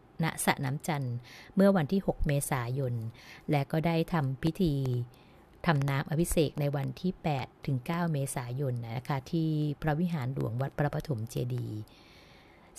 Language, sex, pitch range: Thai, female, 125-160 Hz